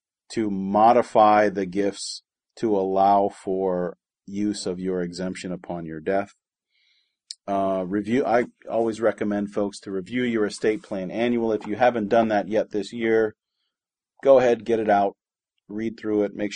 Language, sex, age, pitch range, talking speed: English, male, 40-59, 95-110 Hz, 155 wpm